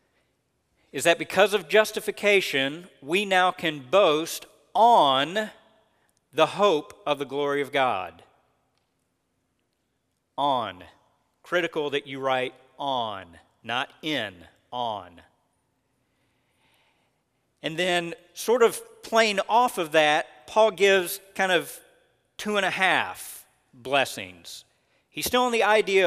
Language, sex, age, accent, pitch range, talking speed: English, male, 40-59, American, 145-195 Hz, 110 wpm